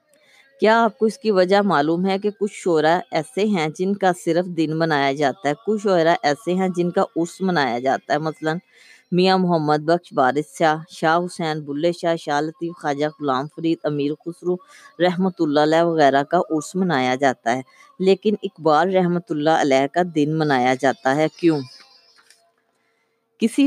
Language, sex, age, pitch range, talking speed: Urdu, female, 20-39, 150-190 Hz, 170 wpm